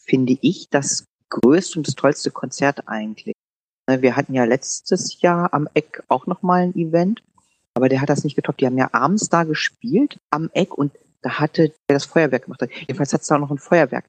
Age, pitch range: 40-59, 130-165 Hz